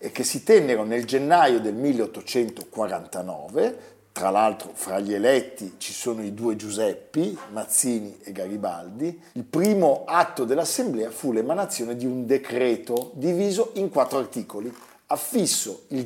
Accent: native